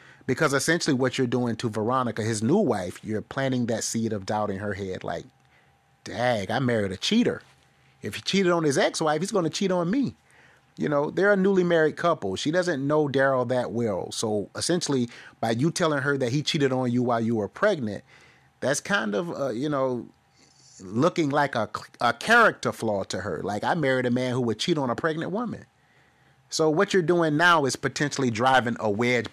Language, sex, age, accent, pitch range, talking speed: English, male, 30-49, American, 110-150 Hz, 205 wpm